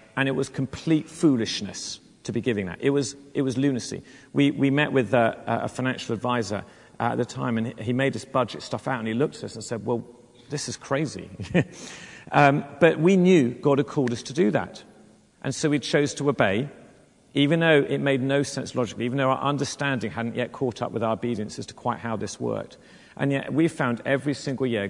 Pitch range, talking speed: 115-140 Hz, 220 wpm